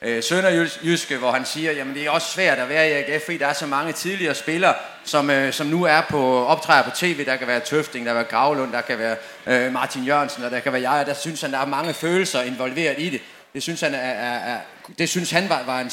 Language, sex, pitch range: Danish, male, 130-180 Hz